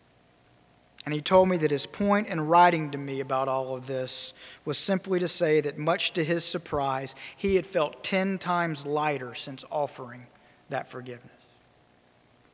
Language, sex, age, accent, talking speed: English, male, 40-59, American, 165 wpm